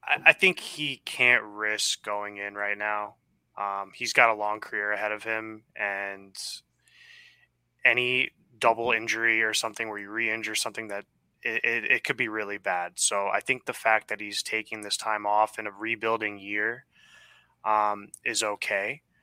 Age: 20-39